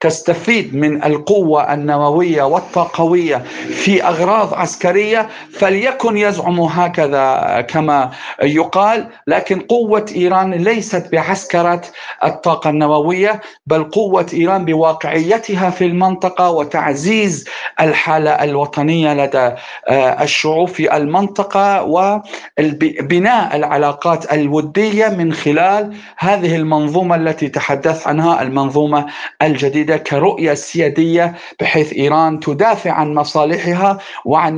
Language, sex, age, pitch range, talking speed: Arabic, male, 50-69, 150-185 Hz, 90 wpm